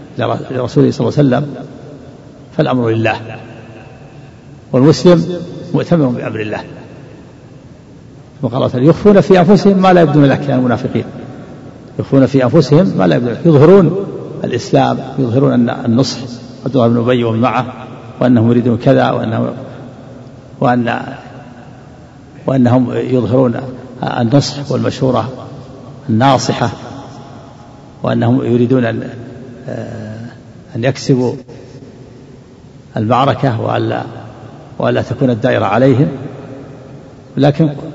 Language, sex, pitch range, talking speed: Arabic, male, 125-145 Hz, 95 wpm